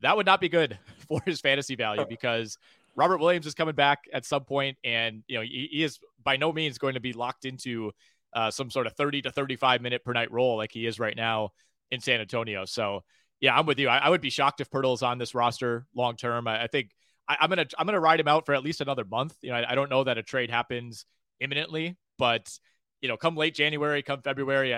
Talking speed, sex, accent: 250 wpm, male, American